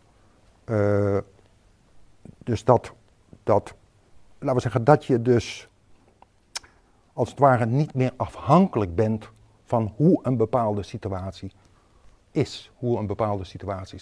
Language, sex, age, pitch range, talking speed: Dutch, male, 50-69, 100-120 Hz, 115 wpm